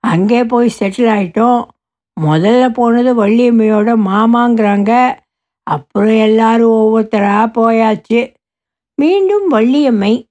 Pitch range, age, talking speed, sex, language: 170-240 Hz, 60-79, 80 wpm, female, Tamil